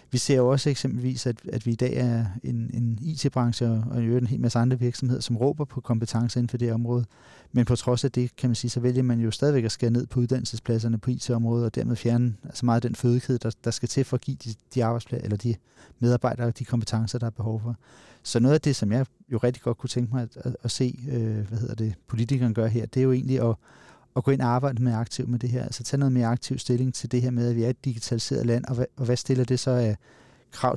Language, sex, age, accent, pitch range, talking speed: Danish, male, 40-59, native, 115-130 Hz, 270 wpm